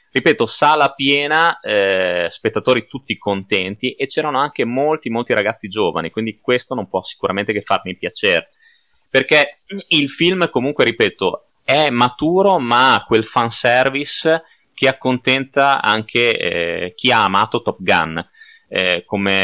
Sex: male